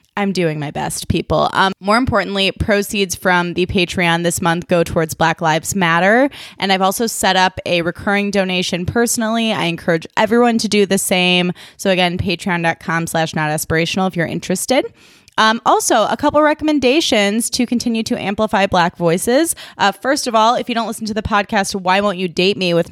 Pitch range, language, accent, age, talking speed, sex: 175-225 Hz, English, American, 20-39, 190 wpm, female